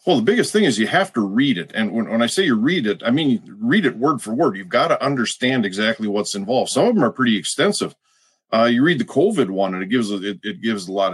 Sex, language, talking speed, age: male, English, 290 wpm, 40-59